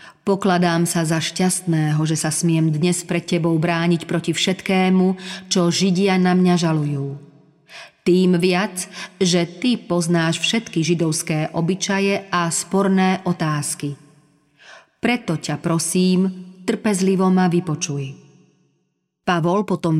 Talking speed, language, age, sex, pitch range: 110 wpm, Slovak, 40-59, female, 160-190 Hz